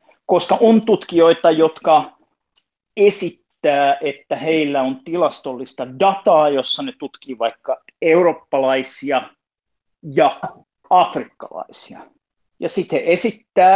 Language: Finnish